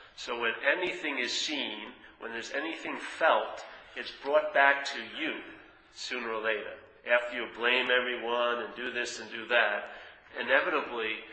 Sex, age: male, 40-59